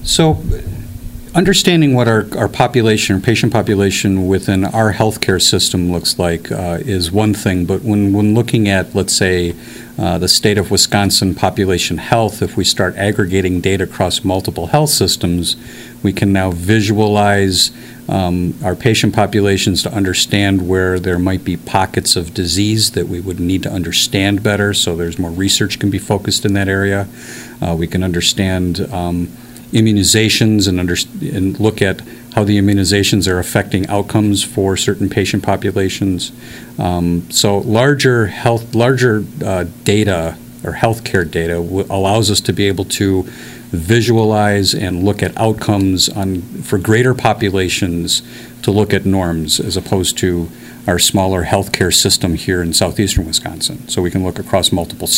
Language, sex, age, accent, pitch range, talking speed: English, male, 50-69, American, 90-110 Hz, 155 wpm